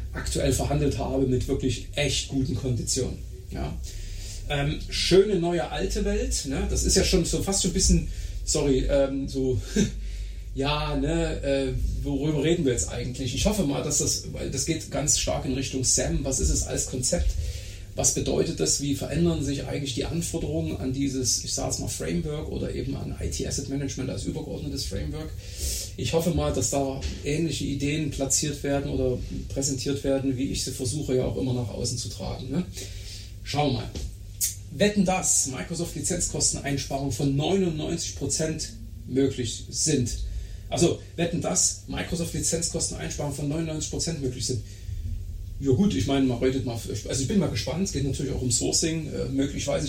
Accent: German